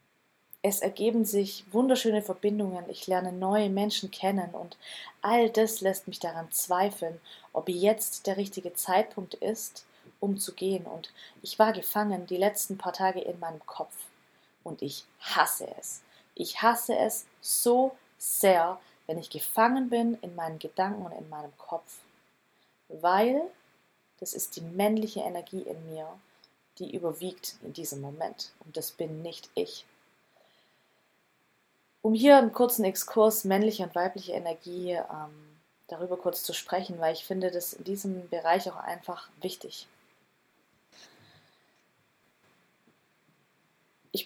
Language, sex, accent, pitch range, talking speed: German, female, German, 170-210 Hz, 135 wpm